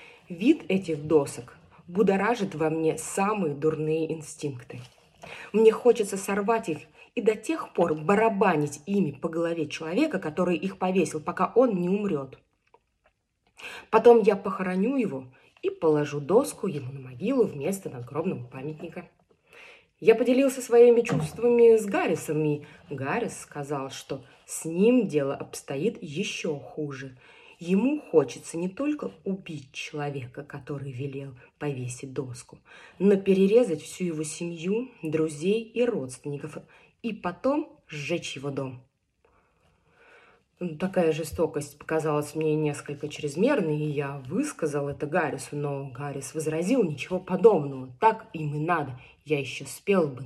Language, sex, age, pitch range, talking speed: Russian, female, 20-39, 145-200 Hz, 125 wpm